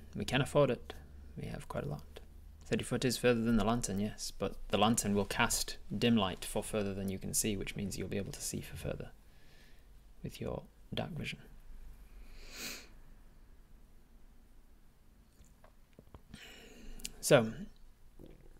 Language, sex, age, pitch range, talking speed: English, male, 20-39, 75-110 Hz, 140 wpm